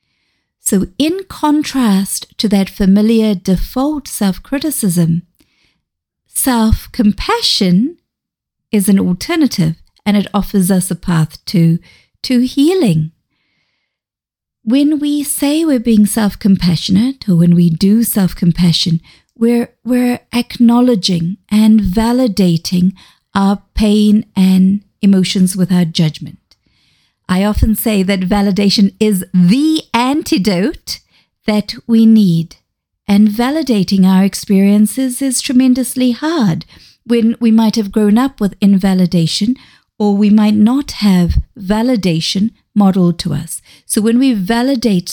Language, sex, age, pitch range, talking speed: English, female, 40-59, 185-240 Hz, 110 wpm